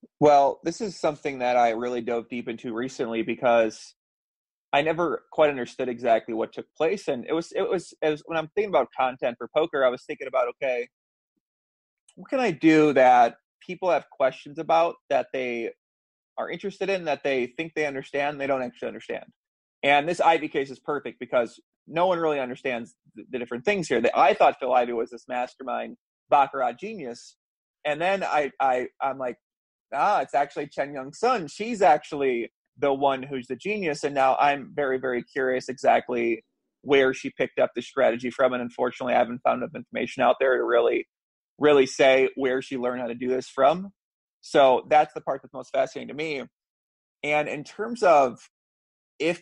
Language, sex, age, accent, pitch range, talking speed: English, male, 30-49, American, 125-165 Hz, 190 wpm